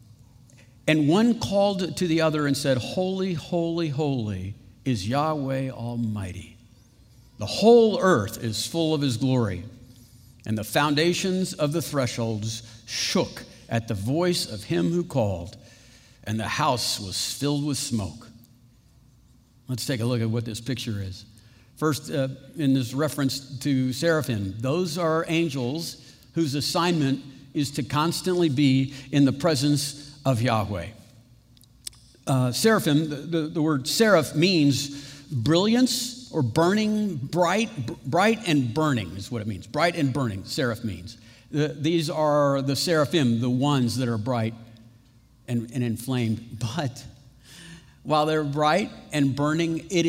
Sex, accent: male, American